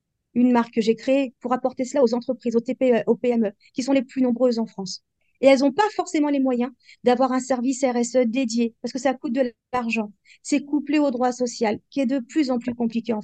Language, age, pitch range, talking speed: French, 40-59, 225-260 Hz, 235 wpm